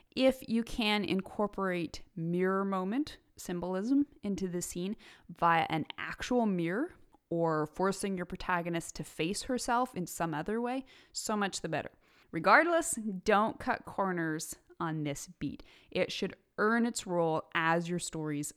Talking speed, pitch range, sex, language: 140 wpm, 165-220 Hz, female, English